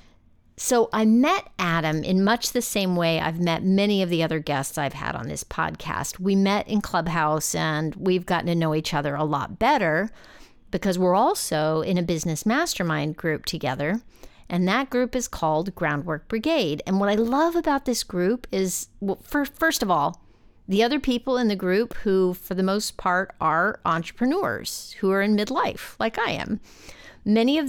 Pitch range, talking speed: 165-225 Hz, 180 wpm